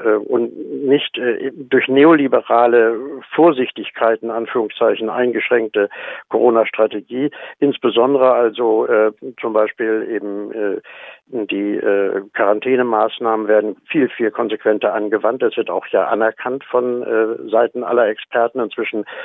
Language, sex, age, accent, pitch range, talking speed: German, male, 60-79, German, 110-135 Hz, 105 wpm